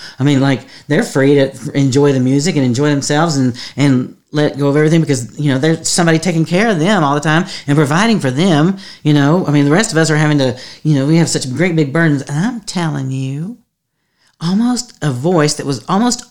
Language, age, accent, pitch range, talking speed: English, 40-59, American, 135-170 Hz, 230 wpm